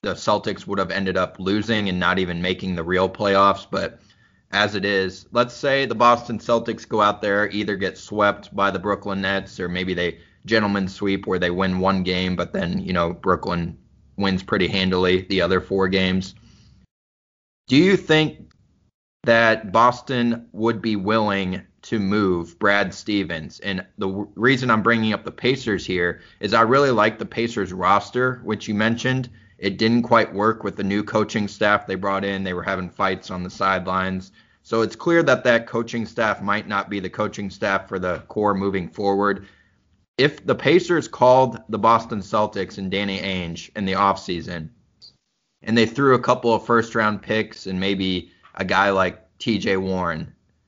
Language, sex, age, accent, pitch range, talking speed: English, male, 20-39, American, 95-110 Hz, 180 wpm